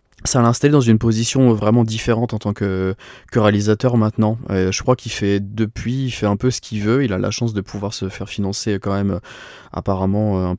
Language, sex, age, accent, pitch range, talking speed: French, male, 20-39, French, 100-110 Hz, 220 wpm